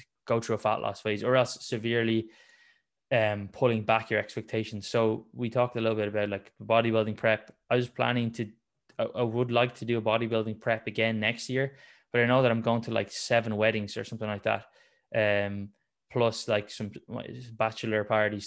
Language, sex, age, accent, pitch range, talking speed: English, male, 20-39, Irish, 105-120 Hz, 195 wpm